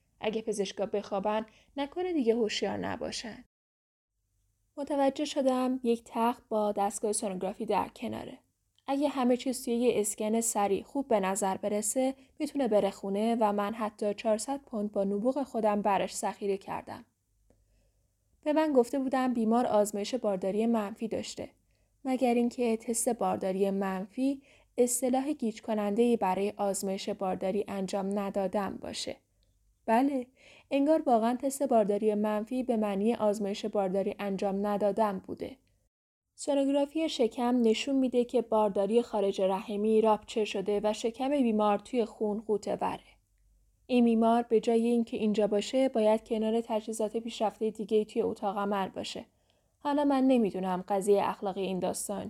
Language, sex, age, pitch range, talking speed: Persian, female, 10-29, 200-245 Hz, 135 wpm